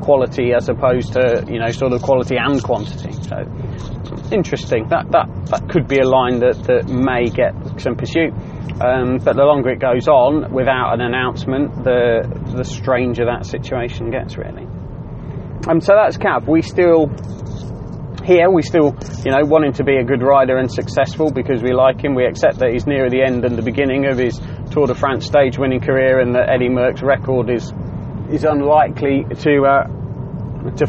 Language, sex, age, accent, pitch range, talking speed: English, male, 30-49, British, 125-145 Hz, 185 wpm